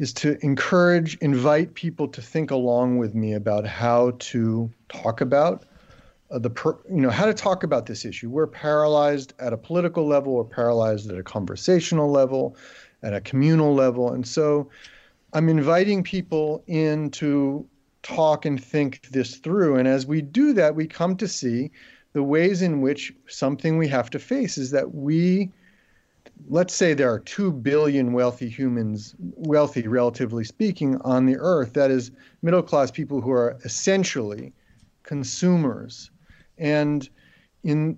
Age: 40-59